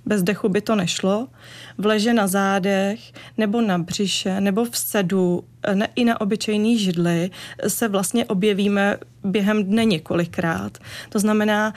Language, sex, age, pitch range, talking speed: Czech, female, 30-49, 190-220 Hz, 140 wpm